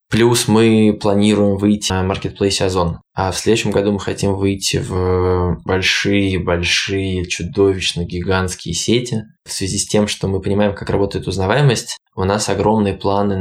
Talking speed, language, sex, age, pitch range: 150 wpm, Russian, male, 20-39, 95-105 Hz